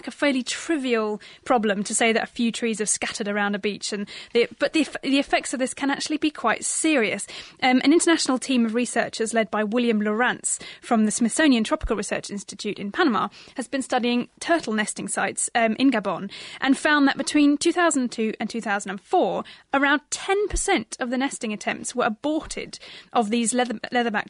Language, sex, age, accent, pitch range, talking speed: English, female, 10-29, British, 225-280 Hz, 185 wpm